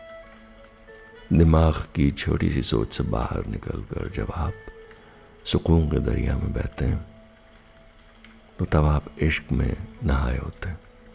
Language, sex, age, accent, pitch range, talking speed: Hindi, male, 60-79, native, 80-110 Hz, 130 wpm